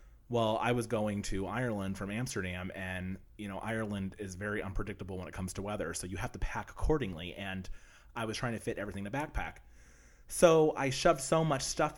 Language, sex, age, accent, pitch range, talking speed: English, male, 30-49, American, 90-105 Hz, 210 wpm